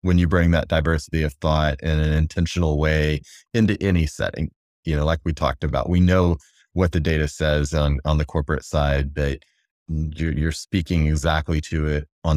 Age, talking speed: 30-49, 185 wpm